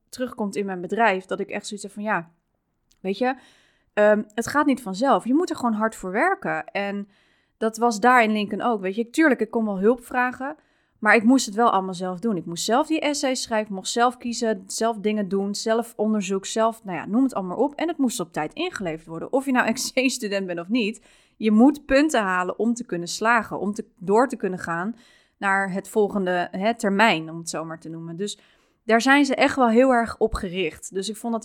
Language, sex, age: Dutch, female, 20-39